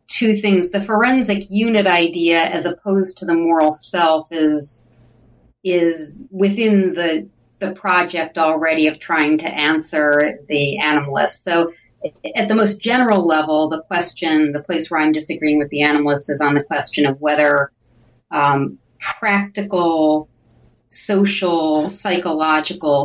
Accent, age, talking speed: American, 30-49, 135 wpm